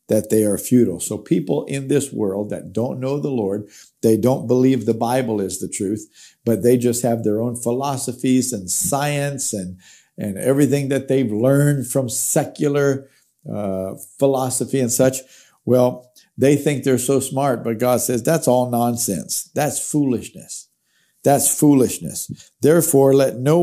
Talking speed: 155 wpm